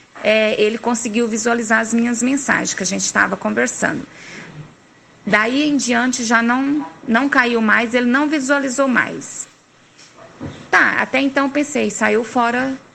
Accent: Brazilian